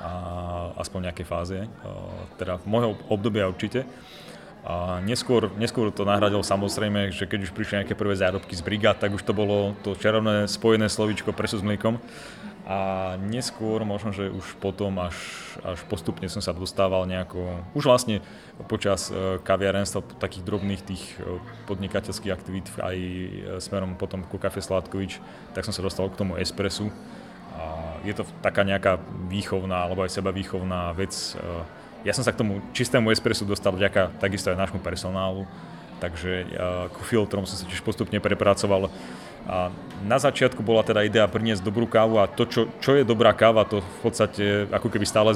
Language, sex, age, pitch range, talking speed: Slovak, male, 30-49, 95-110 Hz, 165 wpm